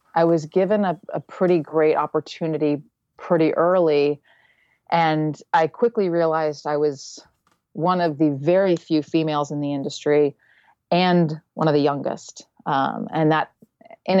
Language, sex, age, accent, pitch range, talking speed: English, female, 30-49, American, 150-180 Hz, 145 wpm